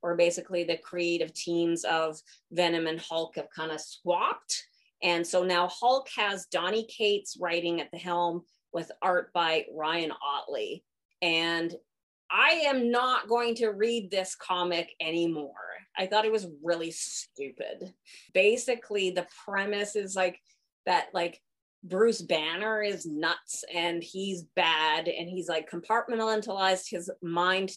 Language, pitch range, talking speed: English, 170-210 Hz, 140 wpm